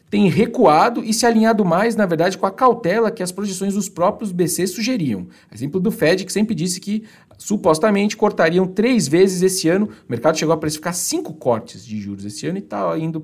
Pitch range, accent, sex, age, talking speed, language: 160-220 Hz, Brazilian, male, 40-59, 205 wpm, Portuguese